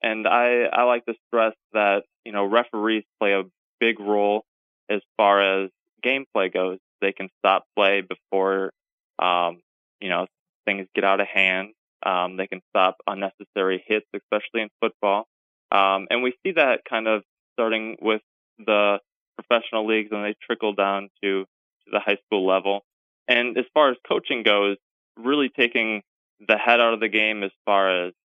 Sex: male